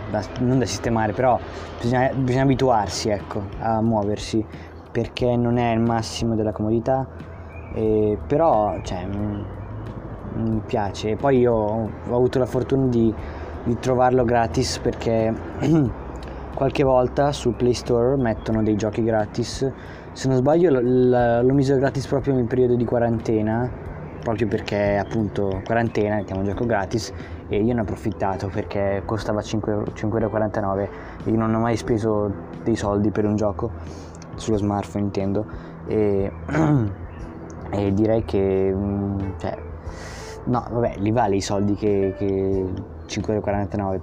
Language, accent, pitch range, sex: Italian, native, 95-115 Hz, male